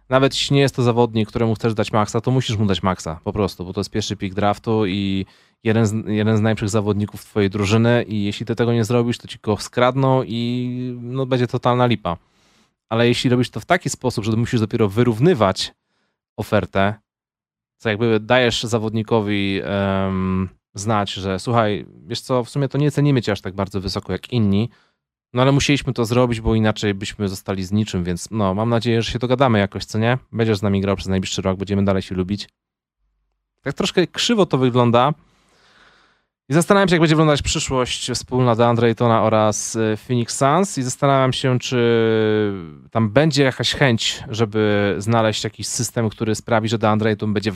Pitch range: 105-125 Hz